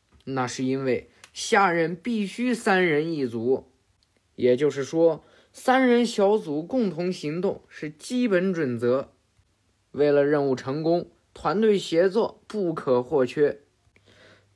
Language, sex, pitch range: Chinese, male, 125-210 Hz